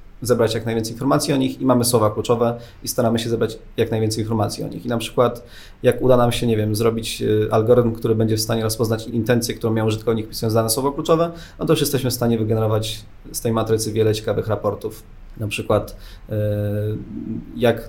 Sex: male